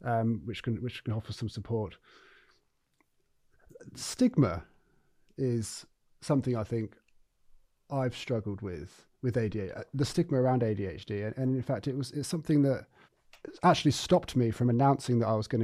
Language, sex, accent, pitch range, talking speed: English, male, British, 110-135 Hz, 155 wpm